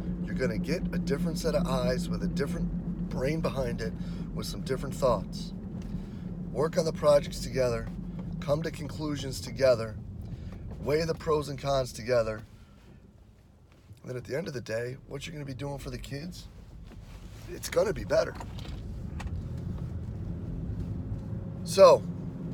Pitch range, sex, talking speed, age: 115-170 Hz, male, 140 wpm, 30-49